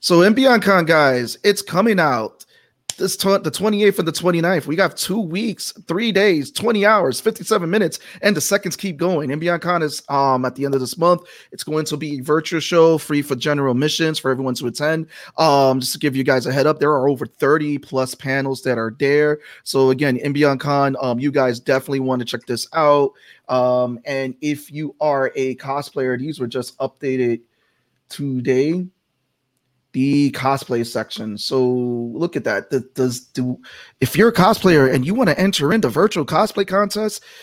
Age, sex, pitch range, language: 30-49, male, 130-195 Hz, English